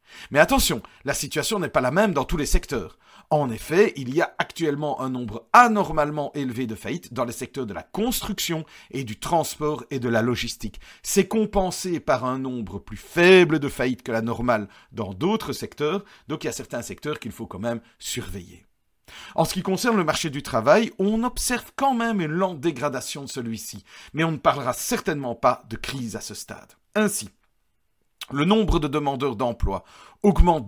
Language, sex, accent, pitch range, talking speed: French, male, French, 120-190 Hz, 190 wpm